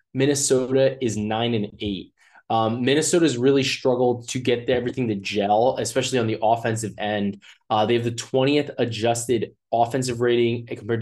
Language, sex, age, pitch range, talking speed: English, male, 20-39, 110-135 Hz, 150 wpm